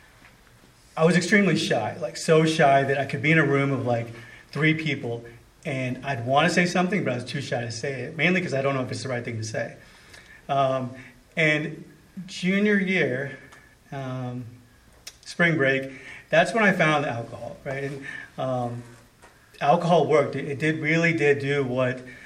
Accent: American